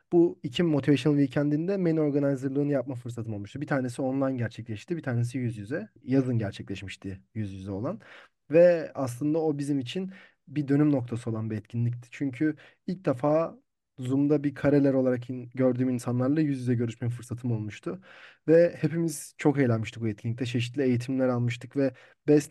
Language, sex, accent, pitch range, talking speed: Turkish, male, native, 120-155 Hz, 155 wpm